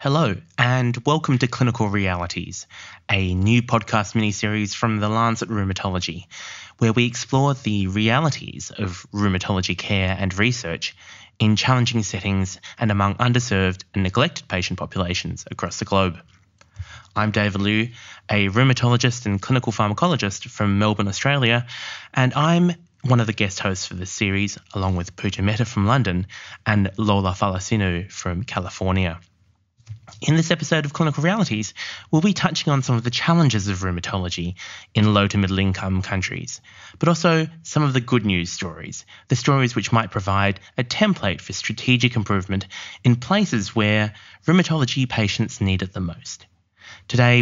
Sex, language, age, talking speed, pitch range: male, English, 20-39, 150 wpm, 95-125 Hz